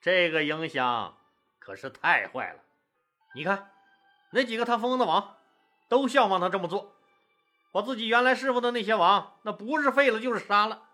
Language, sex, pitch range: Chinese, male, 200-280 Hz